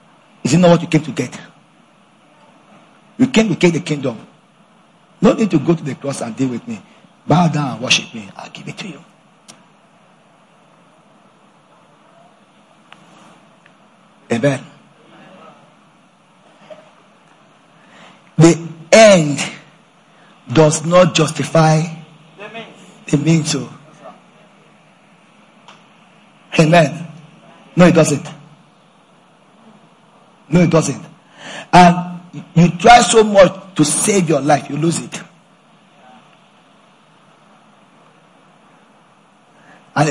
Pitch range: 155-210 Hz